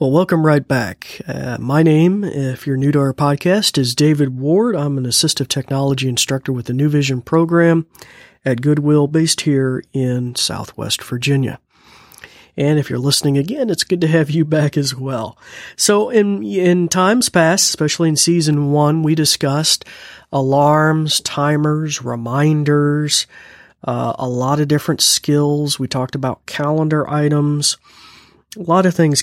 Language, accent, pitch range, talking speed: English, American, 135-165 Hz, 155 wpm